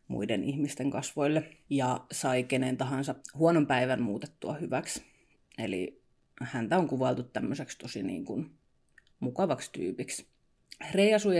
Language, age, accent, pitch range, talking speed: Finnish, 30-49, native, 125-155 Hz, 120 wpm